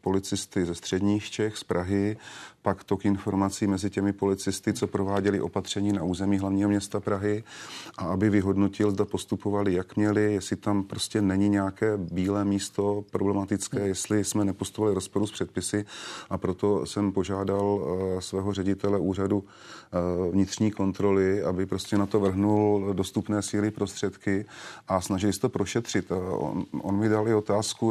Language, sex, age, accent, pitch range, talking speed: Czech, male, 30-49, native, 95-105 Hz, 150 wpm